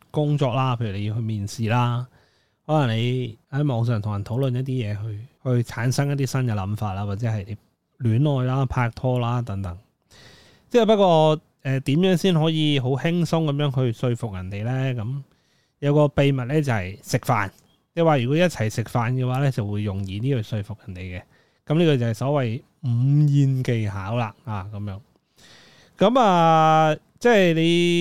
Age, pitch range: 20-39, 115-155 Hz